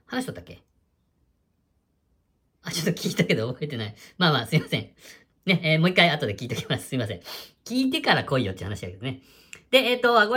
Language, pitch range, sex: Japanese, 105-175 Hz, female